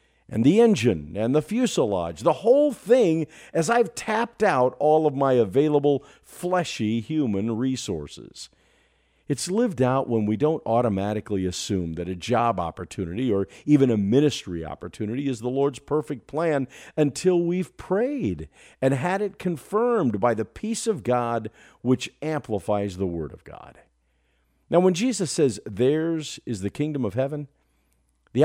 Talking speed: 150 wpm